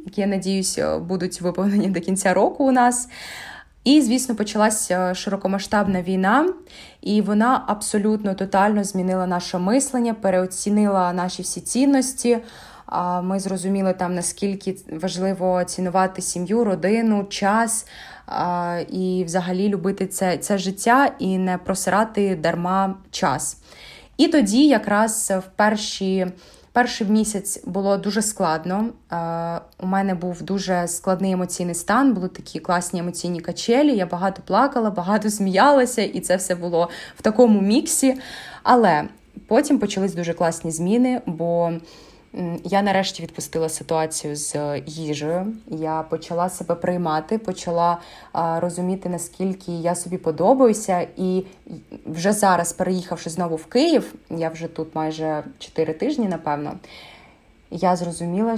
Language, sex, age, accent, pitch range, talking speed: Ukrainian, female, 20-39, native, 175-210 Hz, 120 wpm